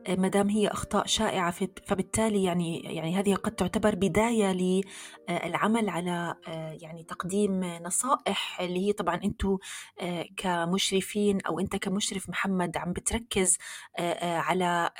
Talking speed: 110 wpm